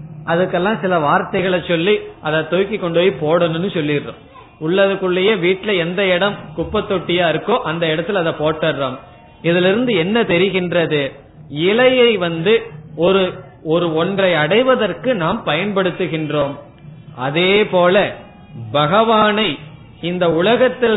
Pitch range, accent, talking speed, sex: 160-205 Hz, native, 95 wpm, male